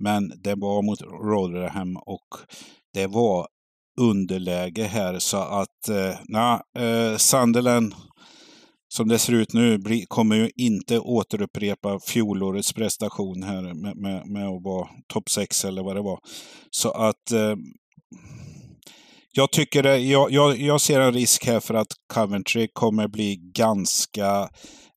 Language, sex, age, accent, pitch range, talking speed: Swedish, male, 50-69, native, 95-110 Hz, 140 wpm